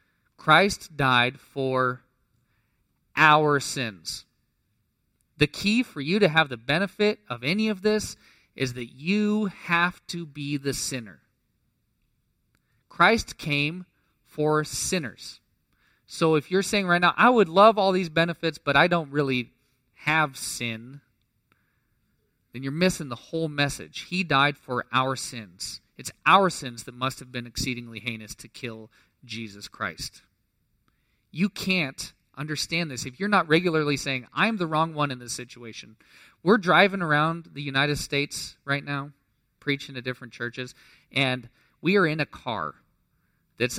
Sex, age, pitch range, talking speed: male, 30-49, 120-160 Hz, 145 wpm